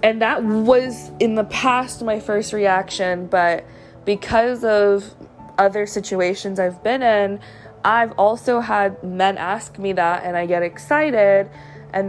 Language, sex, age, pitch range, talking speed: English, female, 20-39, 175-205 Hz, 145 wpm